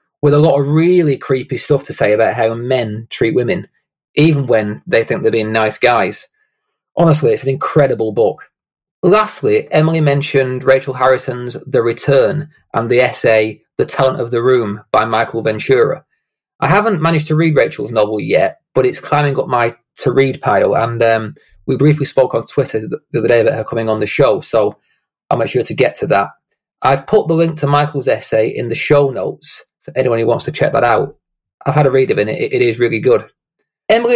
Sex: male